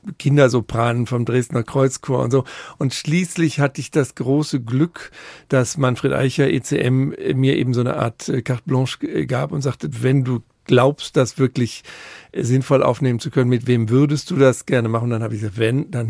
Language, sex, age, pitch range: German, male, 50-69, 125-140 Hz